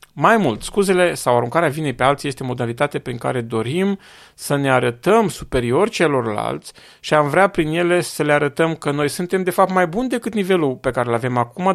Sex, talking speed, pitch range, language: male, 205 wpm, 120-185 Hz, Romanian